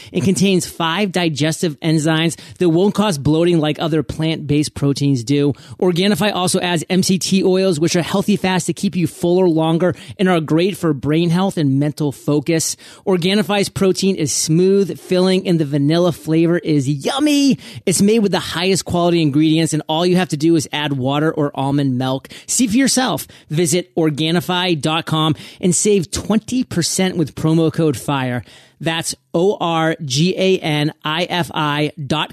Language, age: English, 30-49